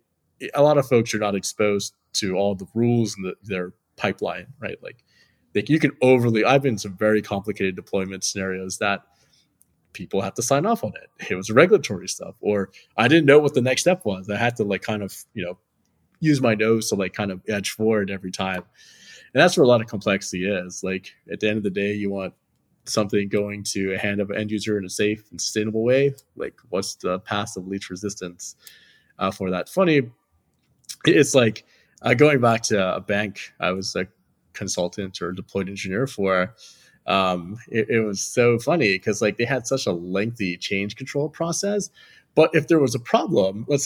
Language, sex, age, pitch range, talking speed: English, male, 20-39, 95-120 Hz, 205 wpm